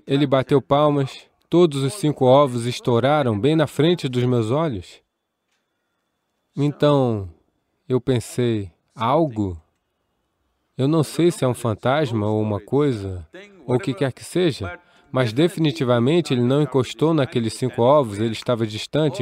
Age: 20-39